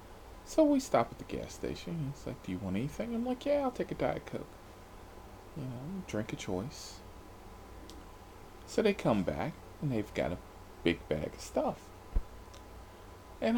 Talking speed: 170 wpm